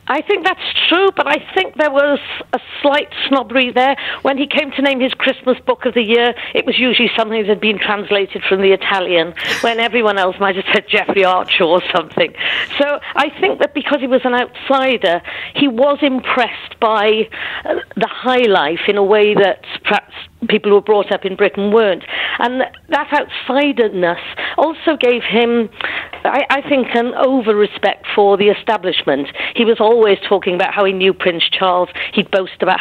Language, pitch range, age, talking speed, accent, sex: English, 195-265 Hz, 50-69, 190 wpm, British, female